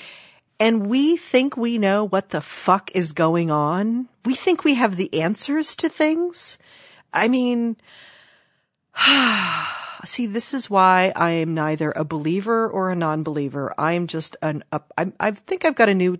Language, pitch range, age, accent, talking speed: English, 165-270 Hz, 40-59, American, 165 wpm